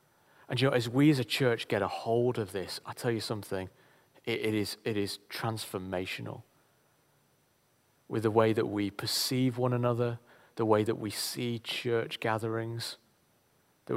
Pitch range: 105-120 Hz